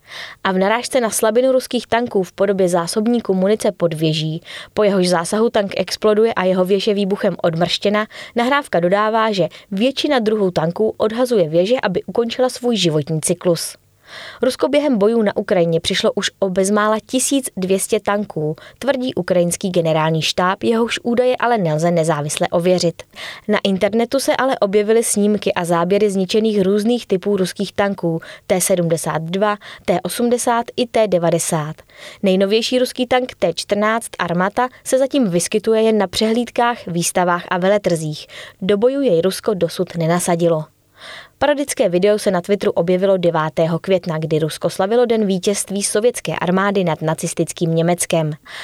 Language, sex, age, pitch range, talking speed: Czech, female, 20-39, 175-220 Hz, 140 wpm